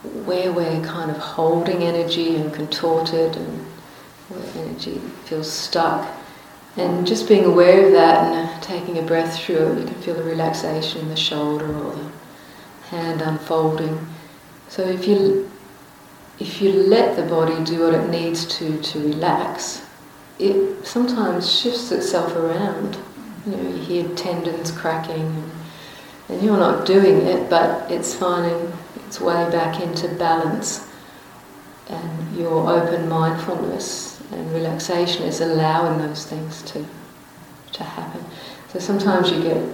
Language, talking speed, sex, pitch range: English, 140 wpm, female, 160-180 Hz